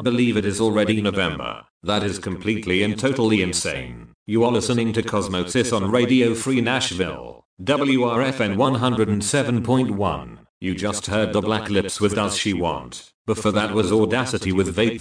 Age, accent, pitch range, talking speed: 40-59, British, 100-120 Hz, 150 wpm